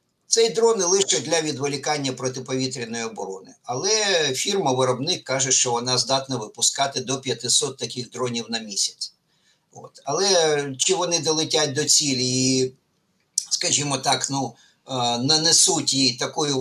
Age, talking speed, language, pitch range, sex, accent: 50-69, 125 wpm, Ukrainian, 130-170 Hz, male, native